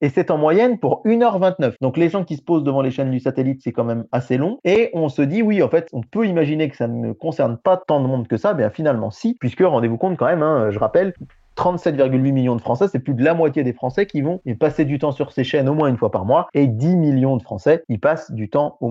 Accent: French